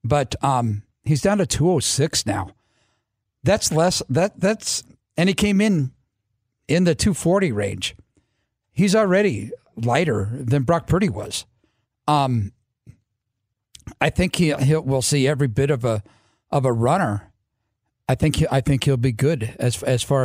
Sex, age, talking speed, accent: male, 50-69, 150 wpm, American